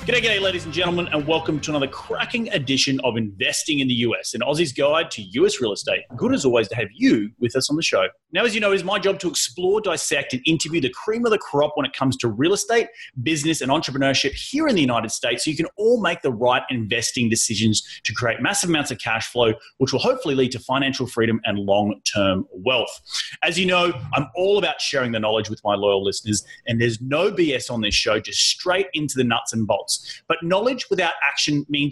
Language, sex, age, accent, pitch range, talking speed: English, male, 30-49, Australian, 125-185 Hz, 230 wpm